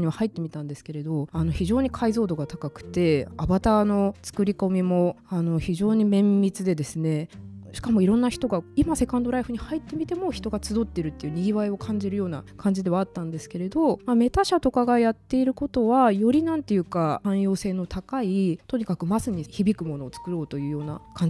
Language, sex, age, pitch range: Japanese, female, 20-39, 155-220 Hz